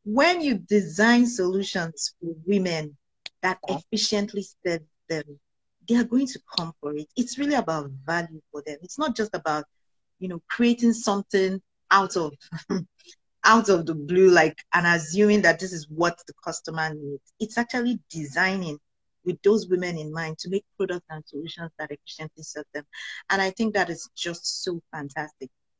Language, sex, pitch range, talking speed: English, female, 155-200 Hz, 165 wpm